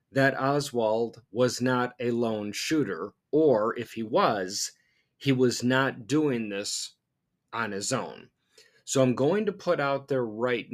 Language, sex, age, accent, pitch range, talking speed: English, male, 40-59, American, 120-150 Hz, 150 wpm